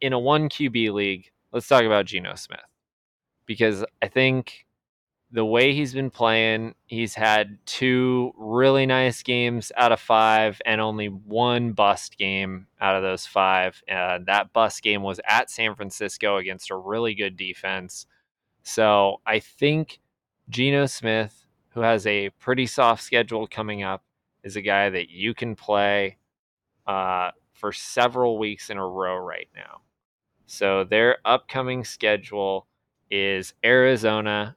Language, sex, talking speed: English, male, 150 wpm